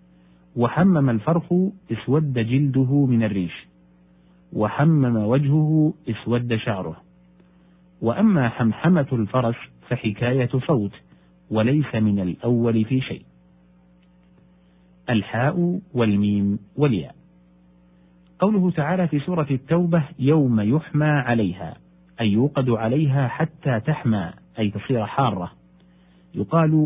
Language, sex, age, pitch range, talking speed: Arabic, male, 50-69, 90-145 Hz, 90 wpm